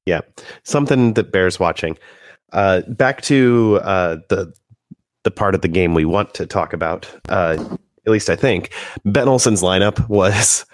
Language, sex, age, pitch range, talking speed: English, male, 30-49, 85-110 Hz, 160 wpm